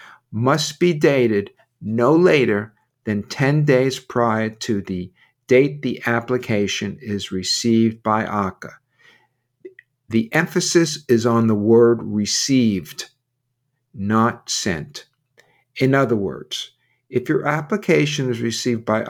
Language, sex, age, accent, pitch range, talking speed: English, male, 50-69, American, 110-140 Hz, 115 wpm